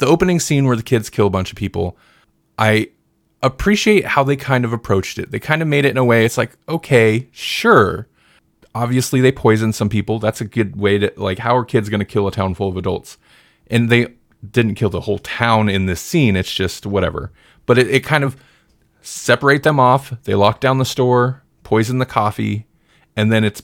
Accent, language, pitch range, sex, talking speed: American, English, 100-130 Hz, male, 215 wpm